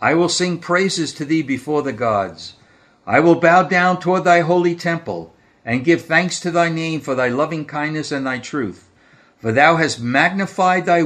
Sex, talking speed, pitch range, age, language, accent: male, 190 wpm, 110-165 Hz, 60-79, English, American